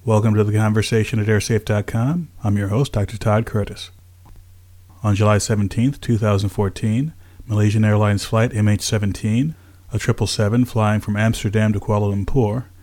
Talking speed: 130 wpm